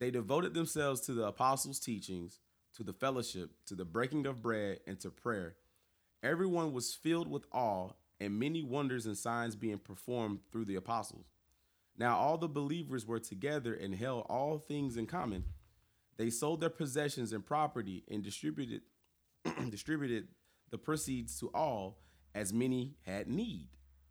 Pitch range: 95-135 Hz